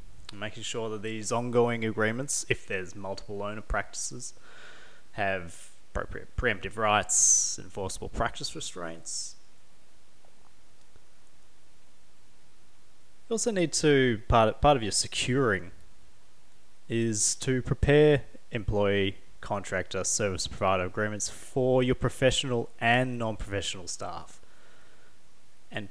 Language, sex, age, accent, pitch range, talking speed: English, male, 20-39, Australian, 95-120 Hz, 100 wpm